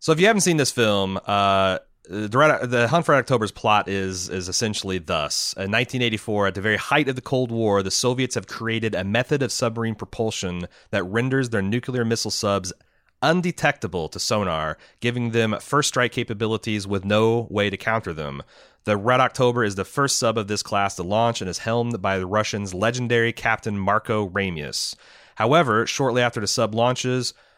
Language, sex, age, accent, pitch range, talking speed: English, male, 30-49, American, 100-120 Hz, 185 wpm